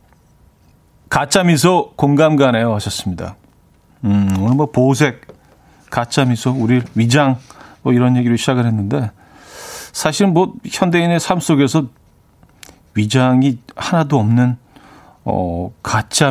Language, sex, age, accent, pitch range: Korean, male, 40-59, native, 115-150 Hz